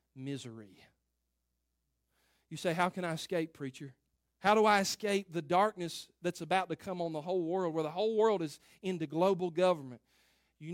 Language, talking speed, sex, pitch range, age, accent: English, 175 wpm, male, 150-210 Hz, 40-59, American